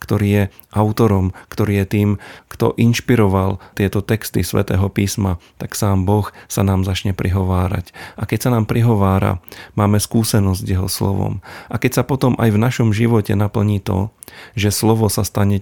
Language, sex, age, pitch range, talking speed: Slovak, male, 40-59, 95-105 Hz, 165 wpm